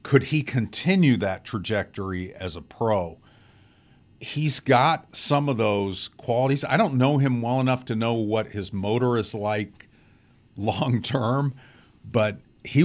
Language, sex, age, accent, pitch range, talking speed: English, male, 50-69, American, 105-130 Hz, 140 wpm